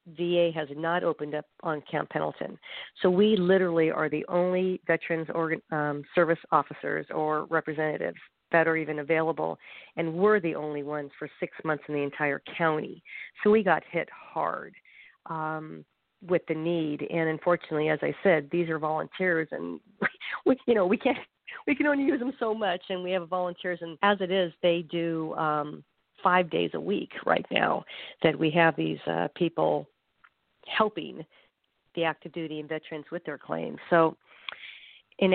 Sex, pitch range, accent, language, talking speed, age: female, 155-180 Hz, American, English, 170 wpm, 50-69